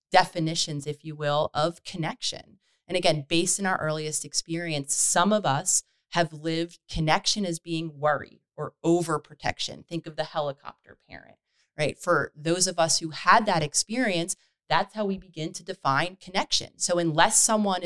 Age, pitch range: 30-49, 145-180 Hz